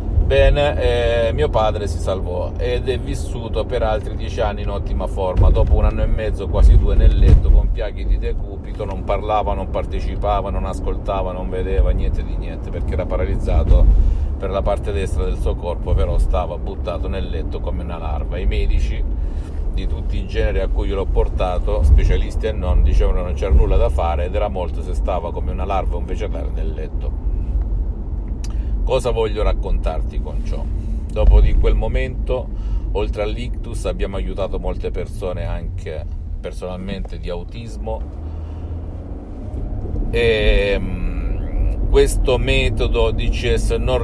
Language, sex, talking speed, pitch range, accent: Italian, male, 155 wpm, 75-100 Hz, native